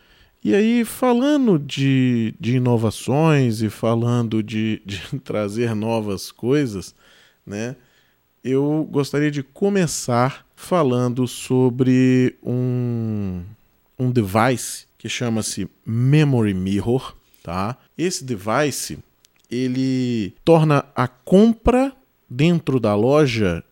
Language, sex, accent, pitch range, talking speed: Portuguese, male, Brazilian, 115-155 Hz, 95 wpm